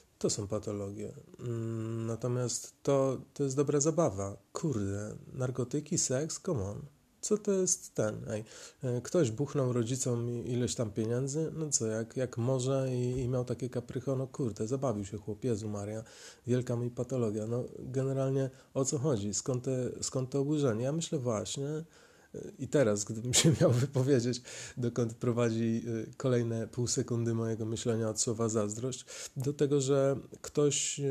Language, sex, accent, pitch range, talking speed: Polish, male, native, 115-140 Hz, 145 wpm